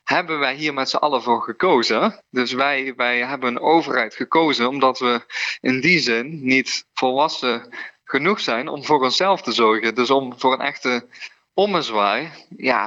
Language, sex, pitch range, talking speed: Dutch, male, 120-140 Hz, 170 wpm